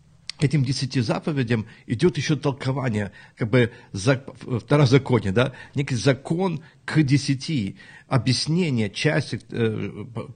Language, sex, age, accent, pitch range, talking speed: Ukrainian, male, 50-69, native, 110-135 Hz, 110 wpm